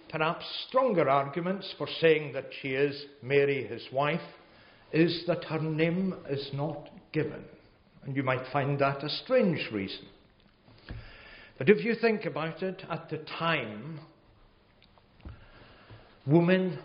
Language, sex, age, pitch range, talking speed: English, male, 60-79, 115-165 Hz, 130 wpm